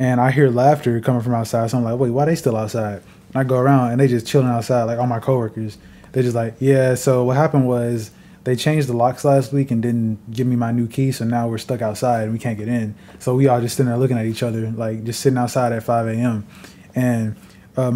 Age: 20-39